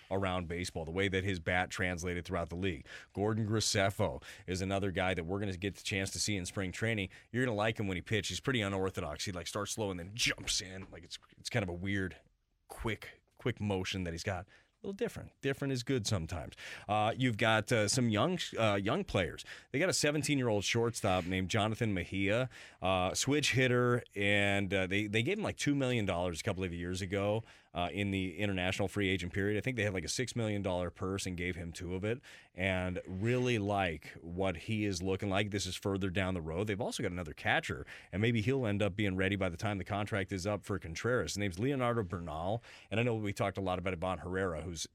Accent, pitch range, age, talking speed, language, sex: American, 90-110 Hz, 30-49, 235 wpm, English, male